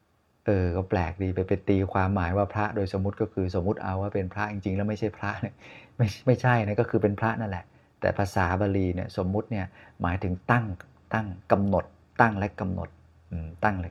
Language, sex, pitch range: Thai, male, 95-110 Hz